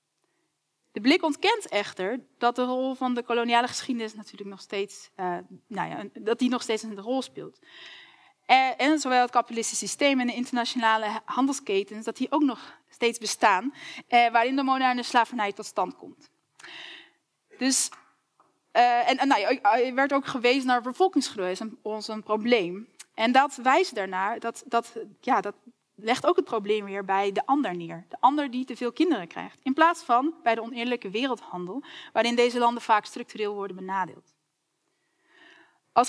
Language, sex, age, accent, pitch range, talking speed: Dutch, female, 20-39, Dutch, 210-265 Hz, 170 wpm